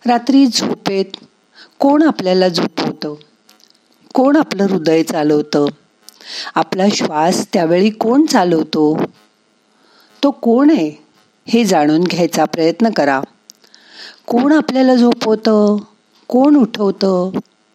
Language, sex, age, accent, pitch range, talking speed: Marathi, female, 50-69, native, 160-240 Hz, 50 wpm